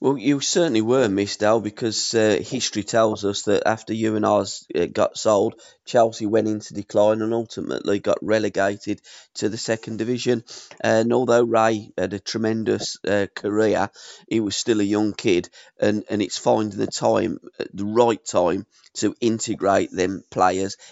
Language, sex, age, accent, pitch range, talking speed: English, male, 20-39, British, 110-130 Hz, 165 wpm